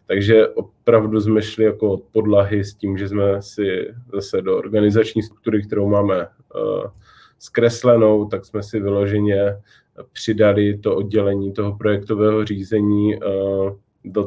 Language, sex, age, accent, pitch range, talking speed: Czech, male, 20-39, native, 100-115 Hz, 125 wpm